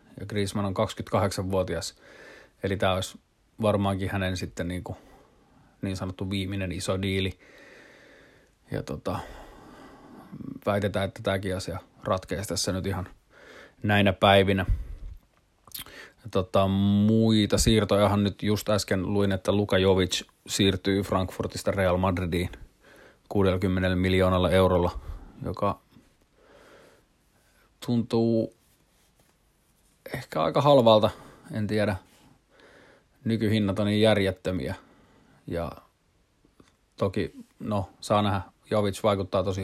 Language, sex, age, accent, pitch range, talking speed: Finnish, male, 30-49, native, 95-105 Hz, 95 wpm